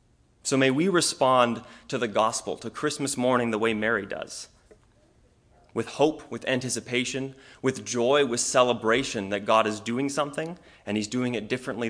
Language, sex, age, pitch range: English, male, 30-49, 115-135 Hz